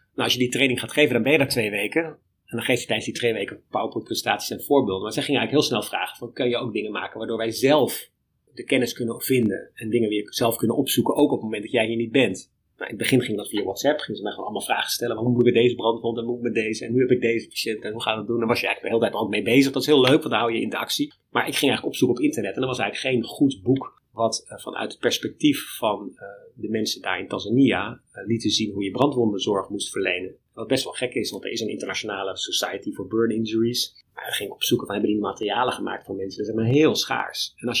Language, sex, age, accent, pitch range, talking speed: Dutch, male, 30-49, Dutch, 110-125 Hz, 300 wpm